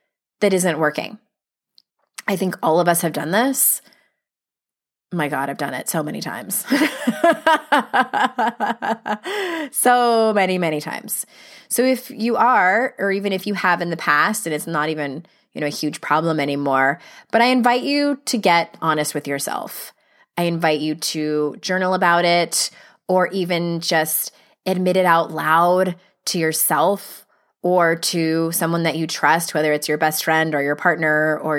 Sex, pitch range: female, 155-200 Hz